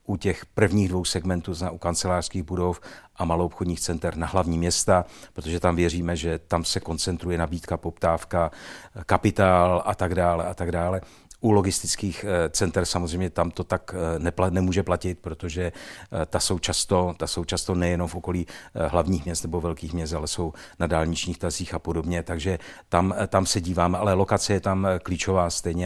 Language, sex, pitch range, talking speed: Czech, male, 85-95 Hz, 170 wpm